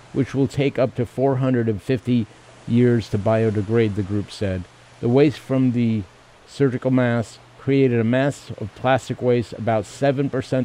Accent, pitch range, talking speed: American, 100-120 Hz, 145 wpm